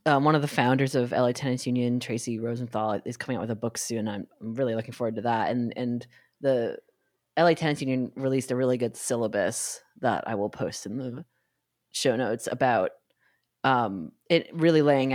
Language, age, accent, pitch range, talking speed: English, 20-39, American, 120-150 Hz, 195 wpm